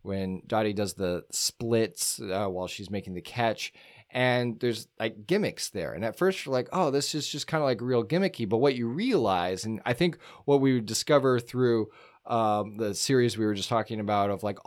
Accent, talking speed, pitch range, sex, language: American, 215 wpm, 100-135 Hz, male, English